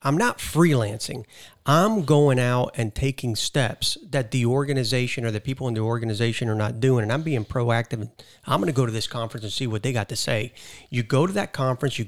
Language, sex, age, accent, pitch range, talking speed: English, male, 40-59, American, 115-140 Hz, 230 wpm